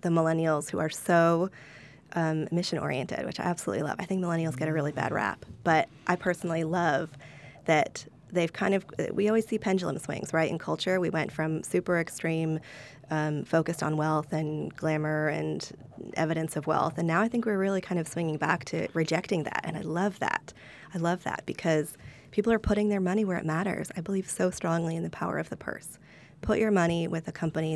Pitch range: 155-185 Hz